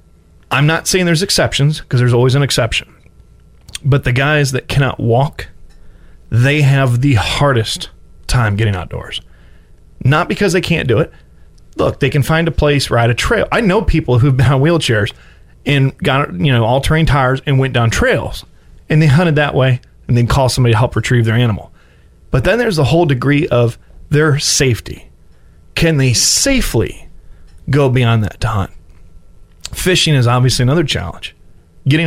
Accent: American